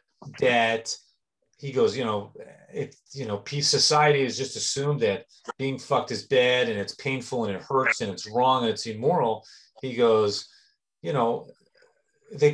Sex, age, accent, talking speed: male, 30-49, American, 165 wpm